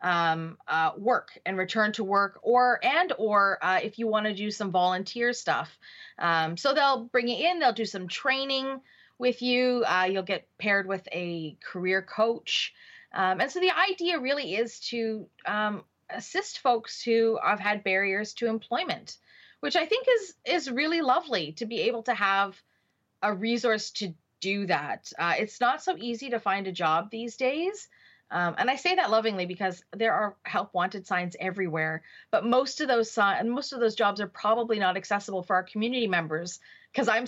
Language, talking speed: English, 185 wpm